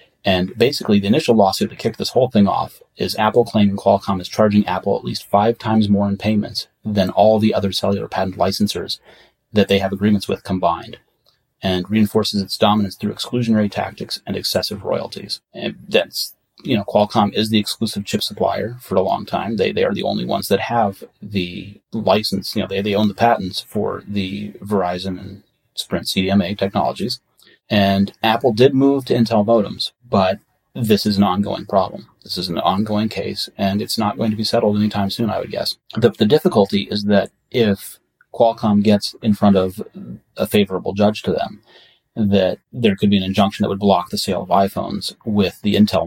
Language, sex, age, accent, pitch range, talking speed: English, male, 30-49, American, 100-110 Hz, 195 wpm